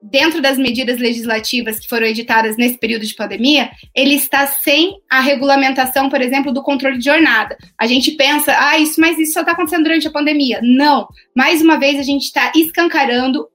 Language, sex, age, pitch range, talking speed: Portuguese, female, 20-39, 265-315 Hz, 190 wpm